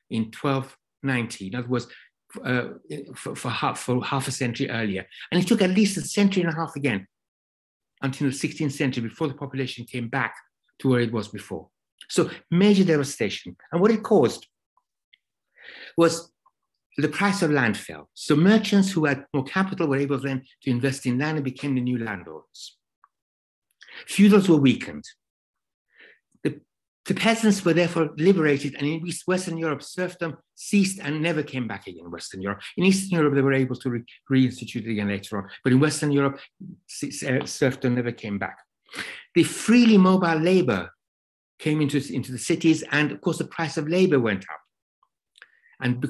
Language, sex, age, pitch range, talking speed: English, male, 60-79, 125-170 Hz, 165 wpm